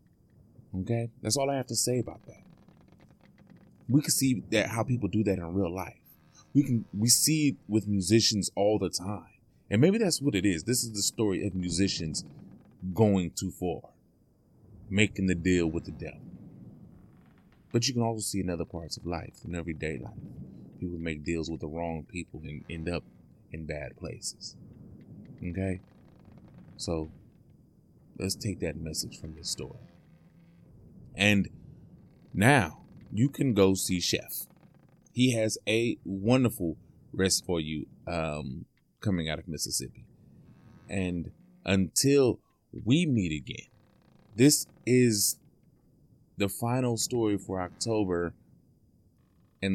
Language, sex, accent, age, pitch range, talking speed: English, male, American, 30-49, 85-120 Hz, 140 wpm